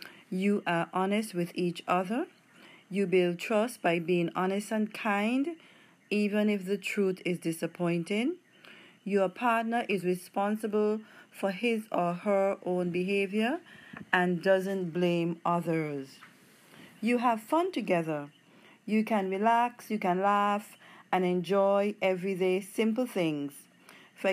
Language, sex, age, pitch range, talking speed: English, female, 40-59, 180-215 Hz, 125 wpm